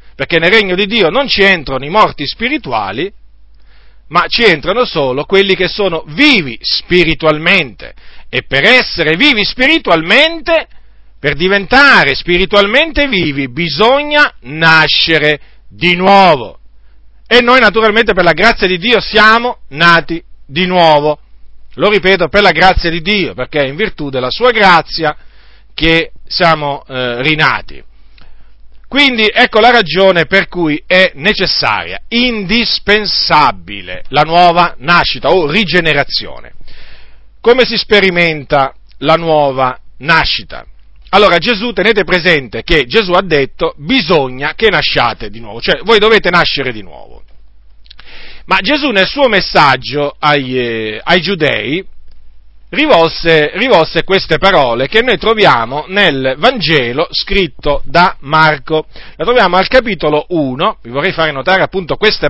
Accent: native